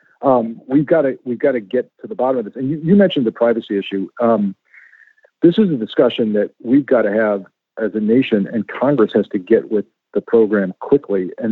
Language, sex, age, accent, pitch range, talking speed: English, male, 50-69, American, 105-150 Hz, 225 wpm